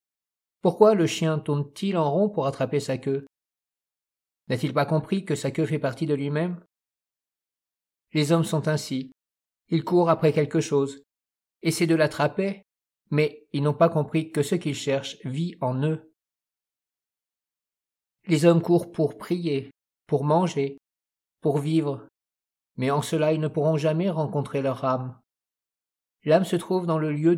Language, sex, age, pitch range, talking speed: French, male, 50-69, 140-165 Hz, 150 wpm